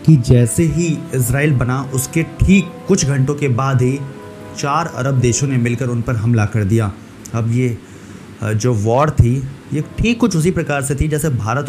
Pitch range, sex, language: 120-150 Hz, male, Hindi